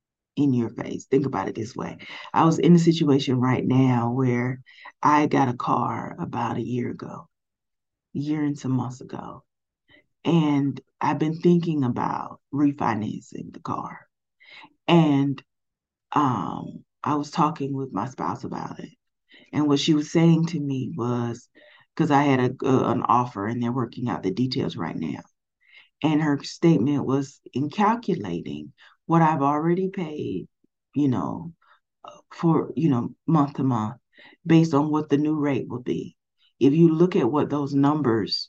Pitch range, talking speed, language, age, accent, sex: 125-155 Hz, 160 wpm, English, 30-49, American, female